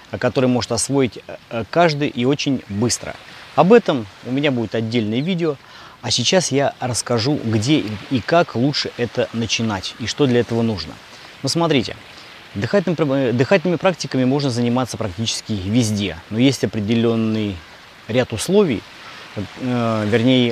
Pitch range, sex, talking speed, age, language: 110-130 Hz, male, 130 wpm, 20-39, Russian